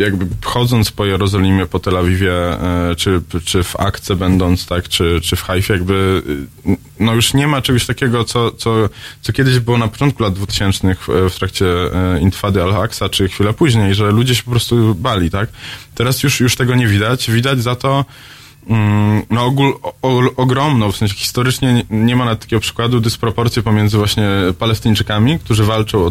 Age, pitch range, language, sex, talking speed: 20-39, 95-120 Hz, Polish, male, 180 wpm